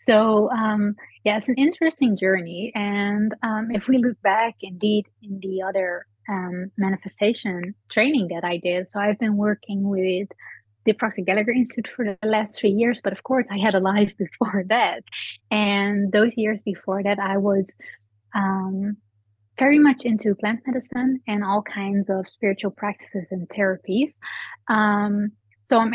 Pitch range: 195-230 Hz